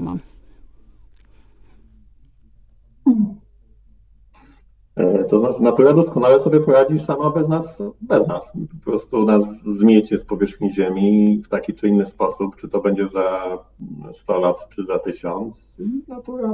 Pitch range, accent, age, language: 100-110 Hz, native, 40-59, Polish